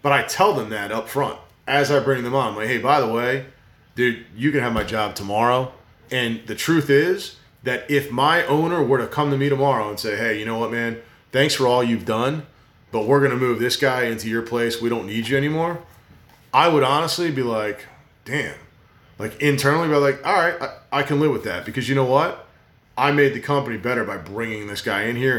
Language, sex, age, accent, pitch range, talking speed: English, male, 30-49, American, 115-145 Hz, 230 wpm